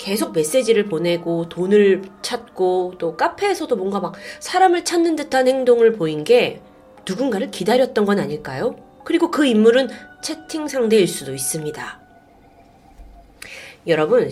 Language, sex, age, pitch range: Korean, female, 30-49, 180-260 Hz